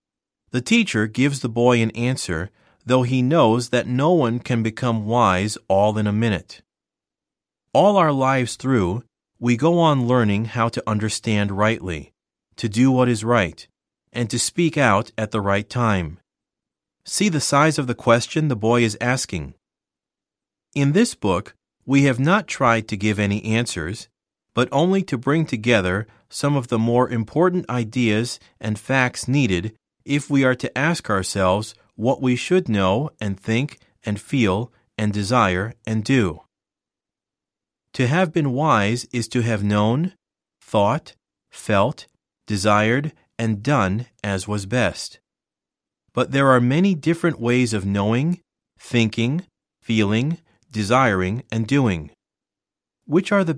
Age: 40-59